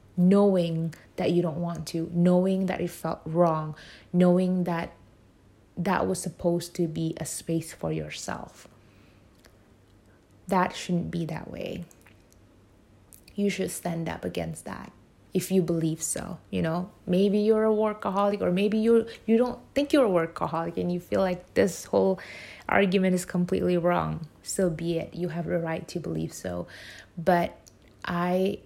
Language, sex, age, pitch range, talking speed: English, female, 20-39, 150-185 Hz, 155 wpm